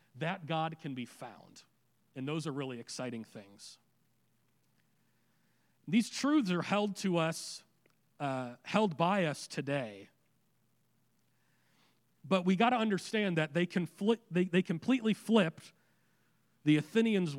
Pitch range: 140-180 Hz